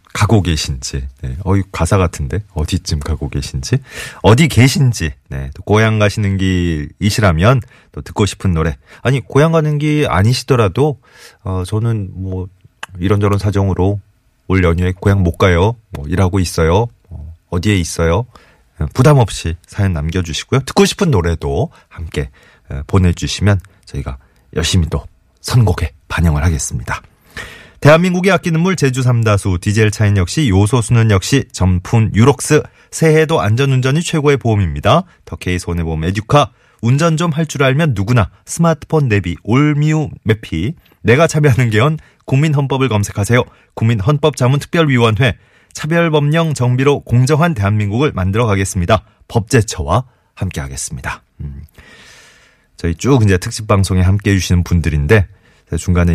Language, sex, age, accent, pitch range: Korean, male, 30-49, native, 85-125 Hz